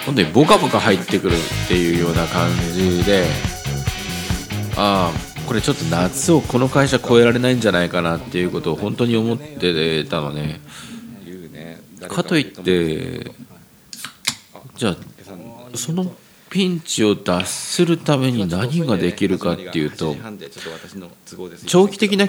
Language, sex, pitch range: Japanese, male, 85-135 Hz